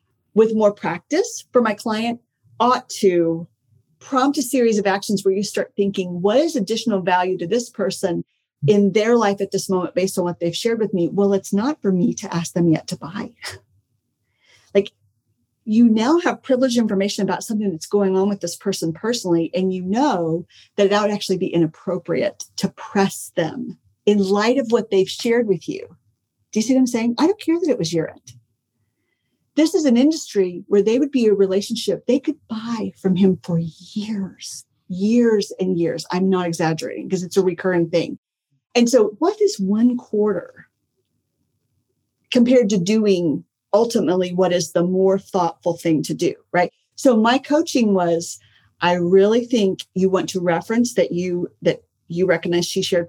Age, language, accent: 40-59, English, American